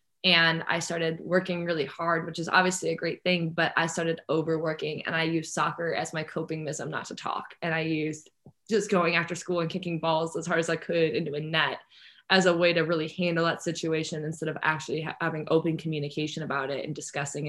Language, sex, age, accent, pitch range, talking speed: English, female, 20-39, American, 160-175 Hz, 220 wpm